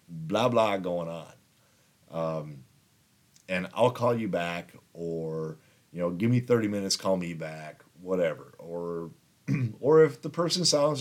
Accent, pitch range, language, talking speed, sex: American, 95-145 Hz, English, 145 wpm, male